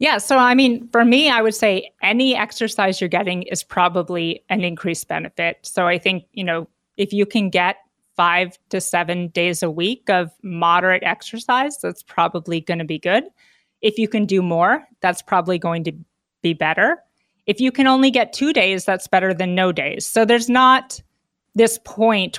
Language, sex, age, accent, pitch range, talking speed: English, female, 30-49, American, 175-215 Hz, 190 wpm